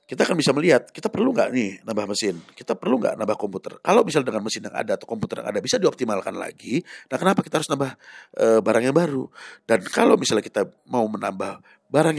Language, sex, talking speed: Indonesian, male, 215 wpm